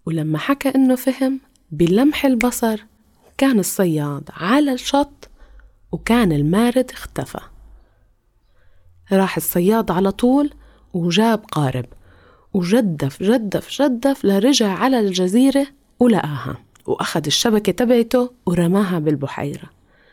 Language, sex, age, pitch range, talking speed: English, female, 20-39, 160-240 Hz, 90 wpm